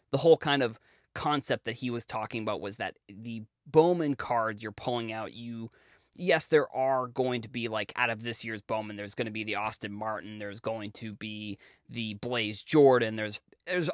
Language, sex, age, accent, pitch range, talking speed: English, male, 20-39, American, 110-135 Hz, 200 wpm